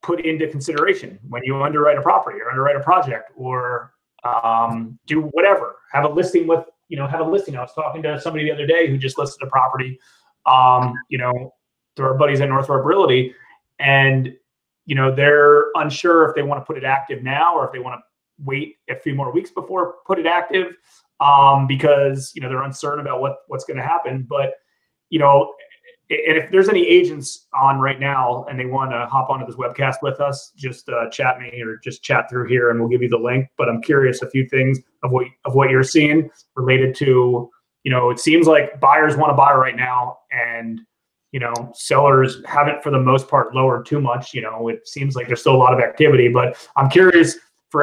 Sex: male